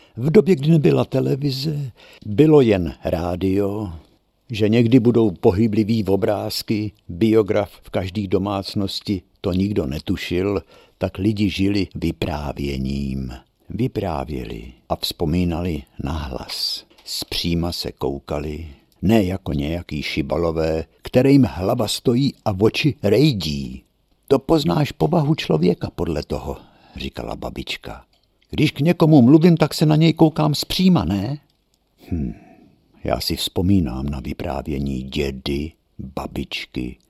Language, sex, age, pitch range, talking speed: Czech, male, 60-79, 80-115 Hz, 115 wpm